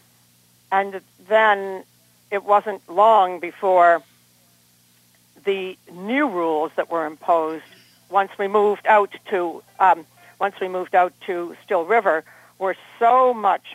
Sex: female